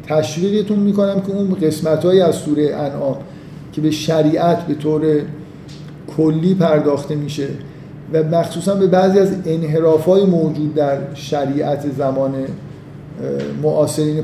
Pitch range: 150-175 Hz